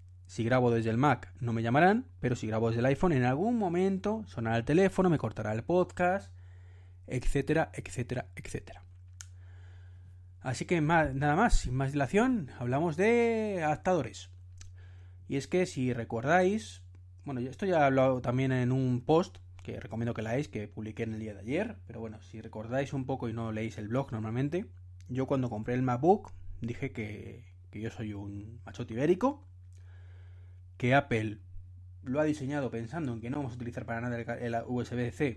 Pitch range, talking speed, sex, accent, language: 90-130 Hz, 180 wpm, male, Spanish, Spanish